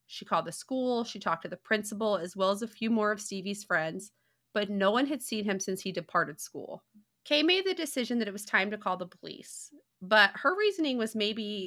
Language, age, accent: English, 30-49, American